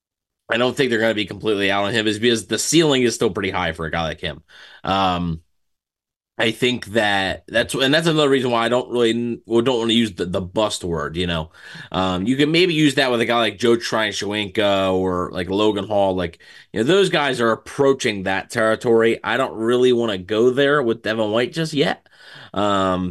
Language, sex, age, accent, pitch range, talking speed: English, male, 20-39, American, 95-120 Hz, 225 wpm